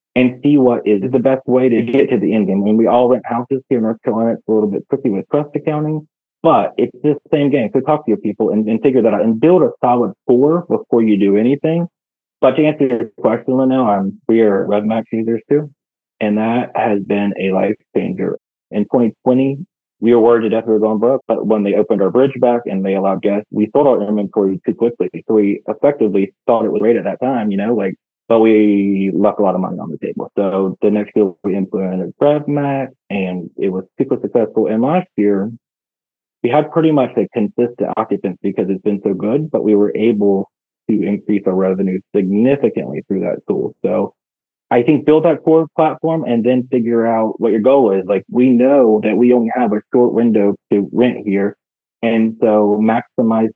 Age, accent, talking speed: 30-49, American, 220 wpm